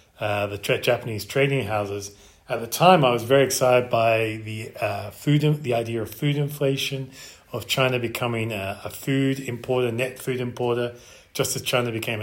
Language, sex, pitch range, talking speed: English, male, 105-125 Hz, 180 wpm